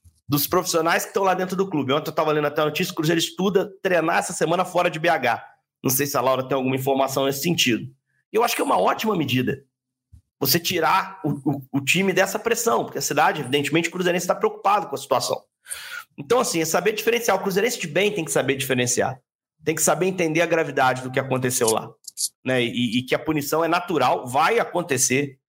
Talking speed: 220 wpm